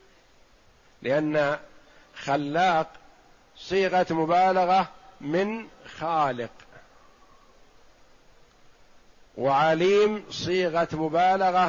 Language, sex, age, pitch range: Arabic, male, 50-69, 150-185 Hz